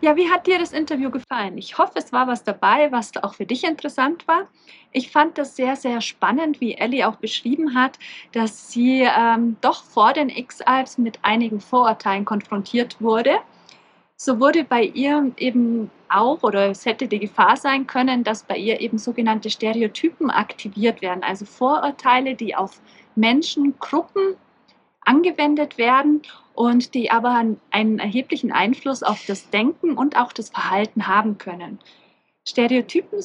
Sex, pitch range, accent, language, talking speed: female, 220-285 Hz, German, German, 155 wpm